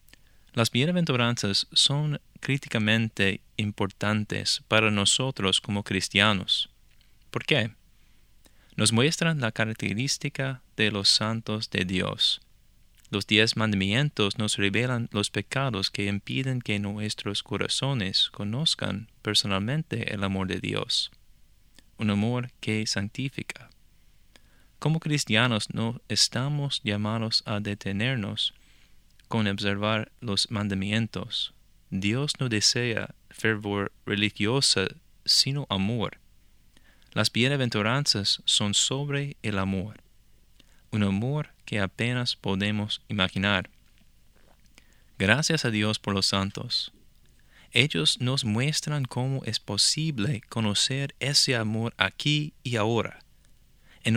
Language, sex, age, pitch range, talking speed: English, male, 20-39, 100-130 Hz, 100 wpm